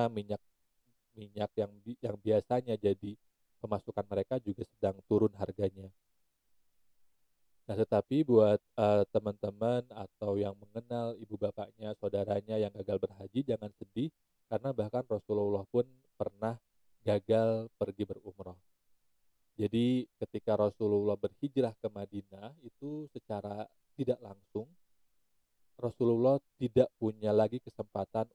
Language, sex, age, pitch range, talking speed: Indonesian, male, 30-49, 100-115 Hz, 105 wpm